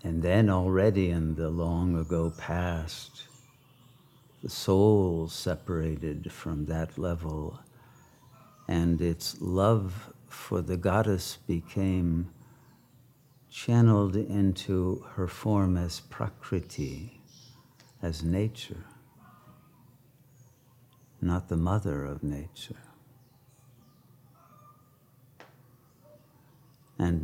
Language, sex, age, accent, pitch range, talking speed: English, male, 60-79, American, 90-130 Hz, 75 wpm